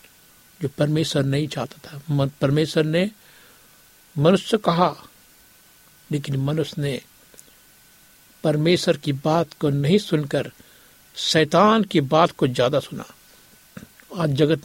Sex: male